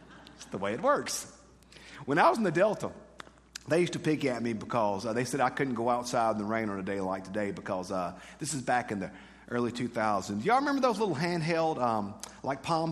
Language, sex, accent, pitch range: English, male, American, 110-160 Hz